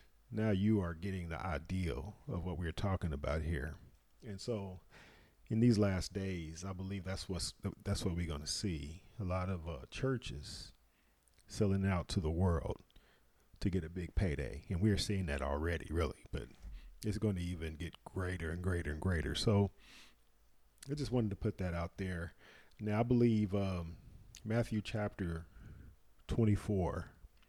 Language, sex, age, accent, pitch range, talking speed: English, male, 40-59, American, 80-105 Hz, 165 wpm